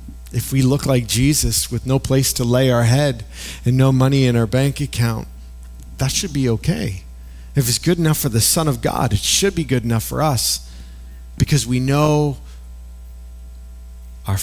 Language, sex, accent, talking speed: English, male, American, 180 wpm